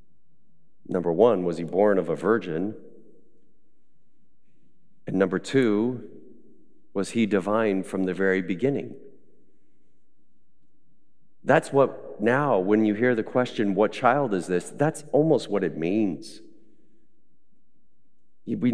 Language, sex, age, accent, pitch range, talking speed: English, male, 40-59, American, 105-165 Hz, 115 wpm